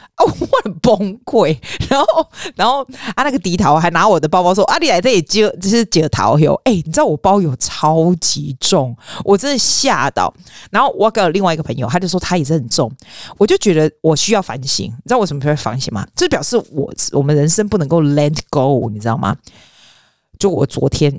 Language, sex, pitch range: Chinese, female, 150-250 Hz